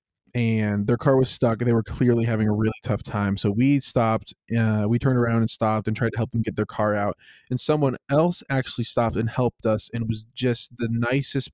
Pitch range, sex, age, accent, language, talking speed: 105-125 Hz, male, 20-39, American, English, 240 wpm